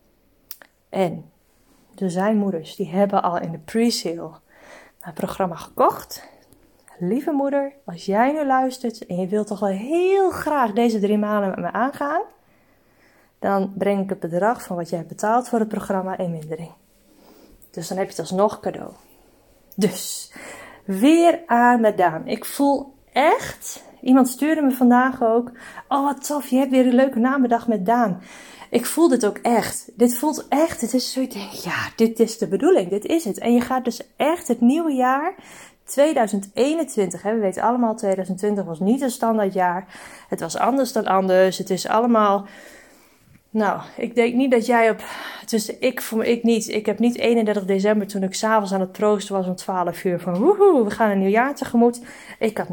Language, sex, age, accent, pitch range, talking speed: Dutch, female, 20-39, Dutch, 195-255 Hz, 180 wpm